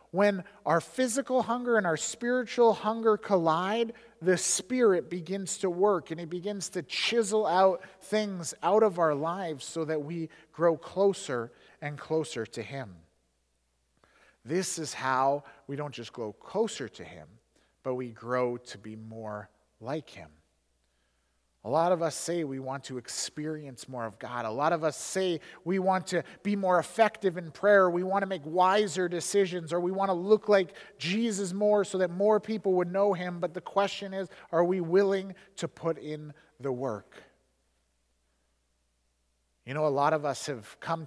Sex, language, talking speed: male, English, 170 wpm